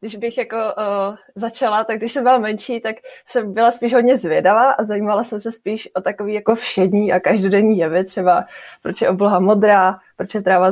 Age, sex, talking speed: 20-39, female, 185 wpm